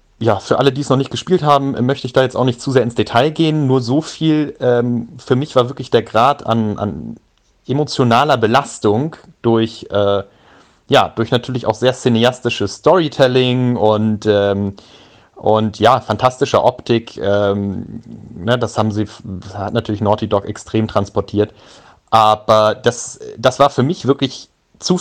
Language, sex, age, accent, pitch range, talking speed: English, male, 30-49, German, 110-140 Hz, 150 wpm